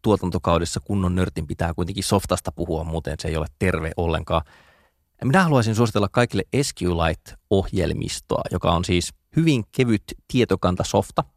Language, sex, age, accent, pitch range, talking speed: Finnish, male, 20-39, native, 85-105 Hz, 125 wpm